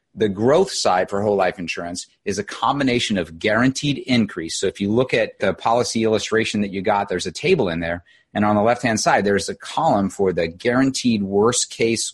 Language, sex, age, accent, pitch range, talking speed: English, male, 30-49, American, 95-120 Hz, 205 wpm